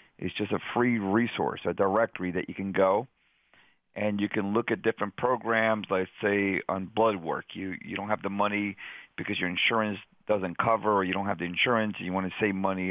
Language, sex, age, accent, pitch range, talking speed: English, male, 50-69, American, 95-115 Hz, 215 wpm